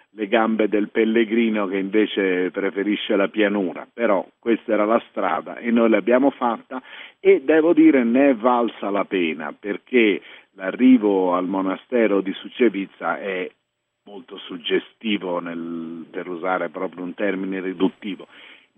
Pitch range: 95-125 Hz